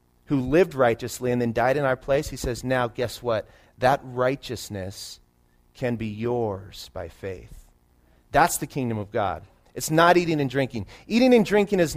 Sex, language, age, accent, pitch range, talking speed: male, English, 30-49, American, 110-170 Hz, 175 wpm